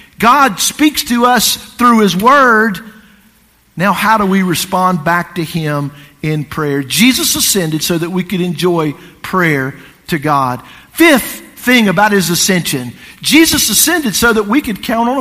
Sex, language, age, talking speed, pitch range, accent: male, English, 50-69, 160 wpm, 185-245 Hz, American